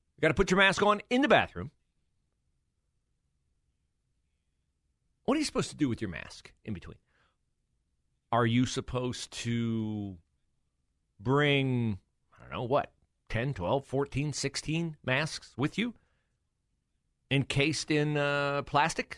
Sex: male